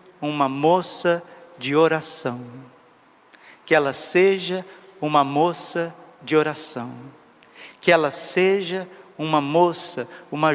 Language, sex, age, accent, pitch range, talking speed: Portuguese, male, 50-69, Brazilian, 155-185 Hz, 95 wpm